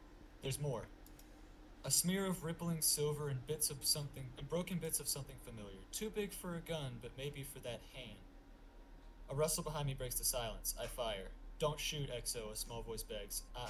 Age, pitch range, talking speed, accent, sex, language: 20-39, 120-150 Hz, 190 wpm, American, male, English